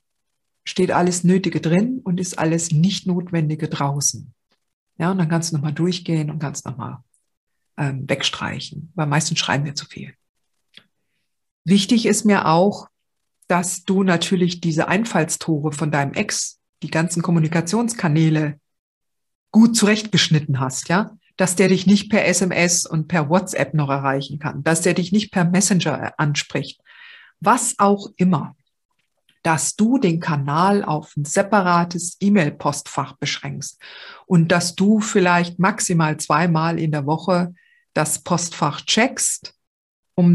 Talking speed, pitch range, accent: 135 wpm, 155-195 Hz, German